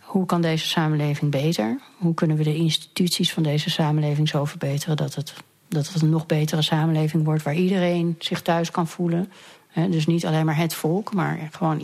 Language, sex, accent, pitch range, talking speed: Dutch, female, Dutch, 155-175 Hz, 190 wpm